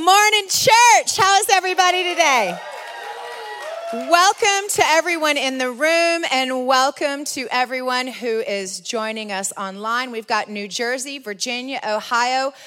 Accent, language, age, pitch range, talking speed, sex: American, English, 30-49, 225-300 Hz, 130 wpm, female